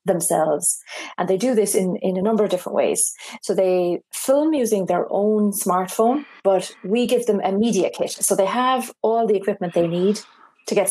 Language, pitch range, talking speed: English, 180-220 Hz, 200 wpm